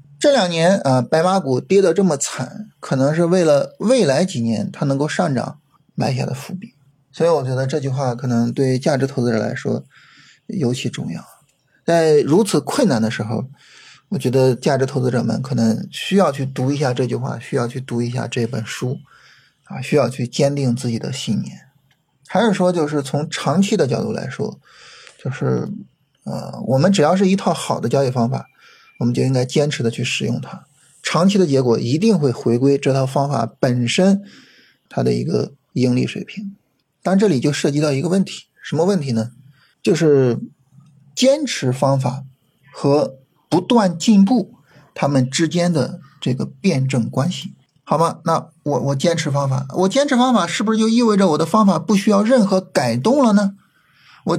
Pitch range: 130-190 Hz